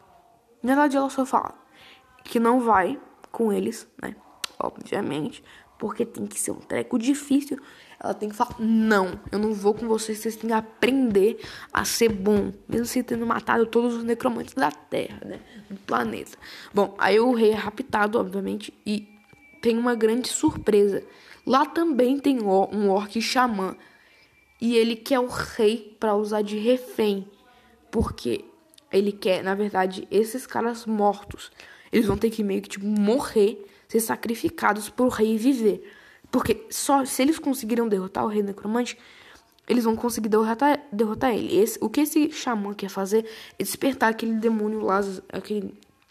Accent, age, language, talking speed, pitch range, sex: Brazilian, 10-29, Portuguese, 160 wpm, 210-250 Hz, female